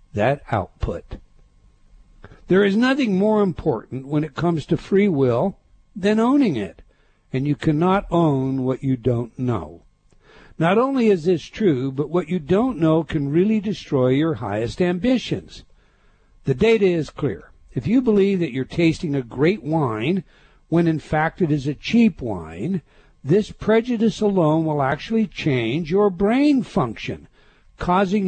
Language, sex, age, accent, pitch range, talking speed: English, male, 60-79, American, 135-195 Hz, 150 wpm